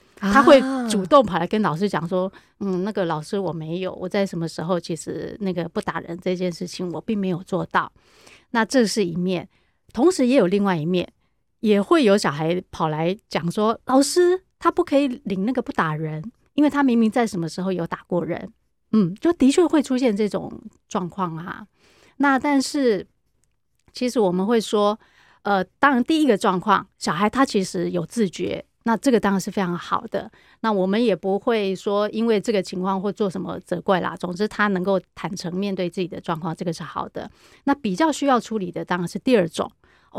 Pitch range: 185-250 Hz